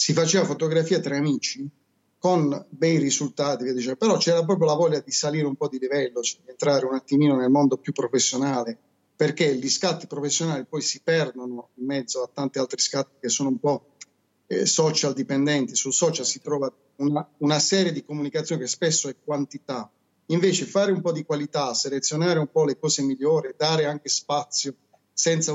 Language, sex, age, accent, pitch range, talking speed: Italian, male, 30-49, native, 135-160 Hz, 175 wpm